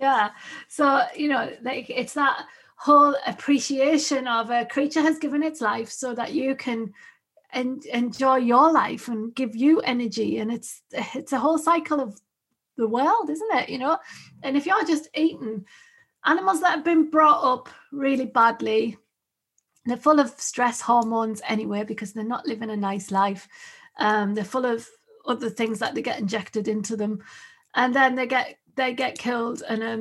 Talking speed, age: 175 wpm, 30-49